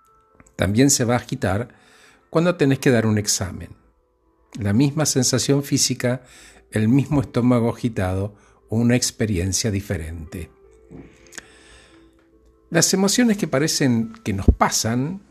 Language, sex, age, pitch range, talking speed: Spanish, male, 50-69, 105-155 Hz, 120 wpm